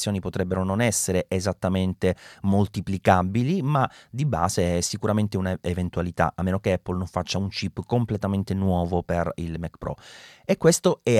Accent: native